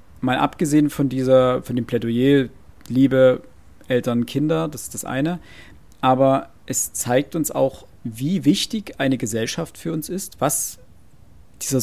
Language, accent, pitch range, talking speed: German, German, 120-155 Hz, 140 wpm